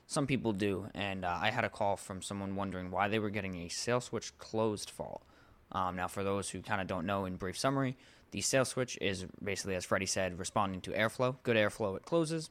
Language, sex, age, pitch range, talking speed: English, male, 20-39, 95-110 Hz, 230 wpm